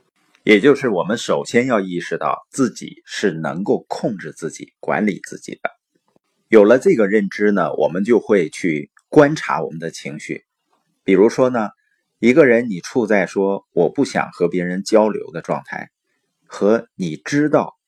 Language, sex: Chinese, male